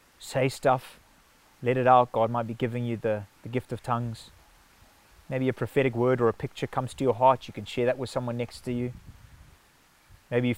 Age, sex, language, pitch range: 20-39, male, English, 115-130 Hz